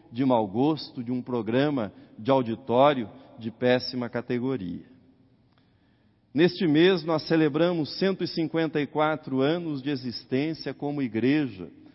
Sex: male